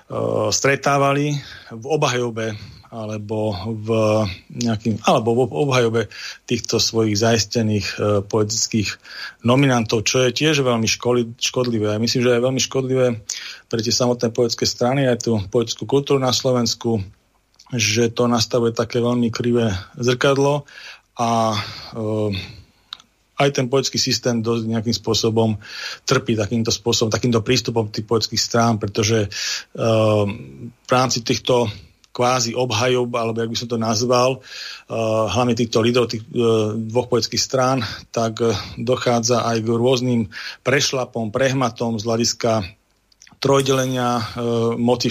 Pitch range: 110-125 Hz